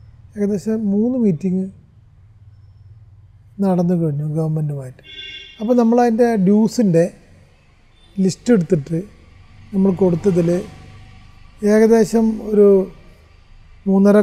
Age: 30-49